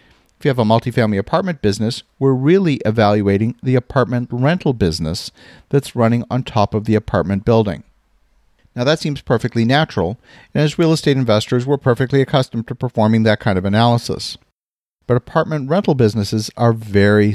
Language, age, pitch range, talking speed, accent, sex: English, 50-69, 110-135 Hz, 165 wpm, American, male